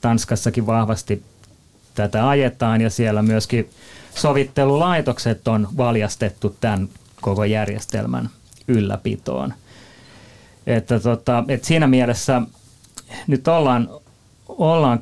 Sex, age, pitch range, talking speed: male, 30-49, 110-140 Hz, 90 wpm